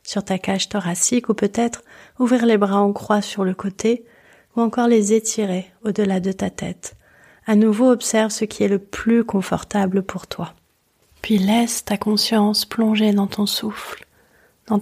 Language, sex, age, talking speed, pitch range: French, female, 30-49, 170 wpm, 200-220 Hz